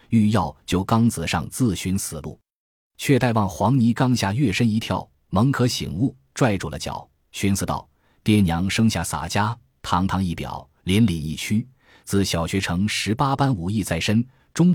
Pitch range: 85-115 Hz